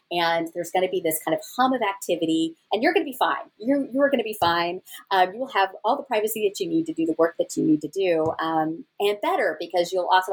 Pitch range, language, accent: 155-205 Hz, English, American